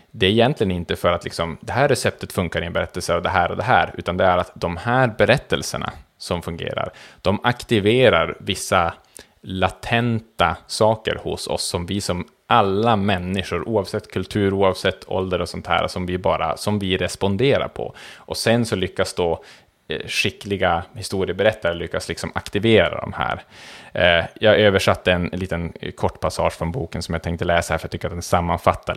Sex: male